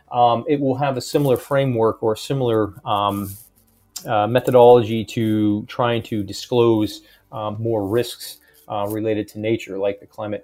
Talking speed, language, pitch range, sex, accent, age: 155 wpm, English, 105-135 Hz, male, American, 30-49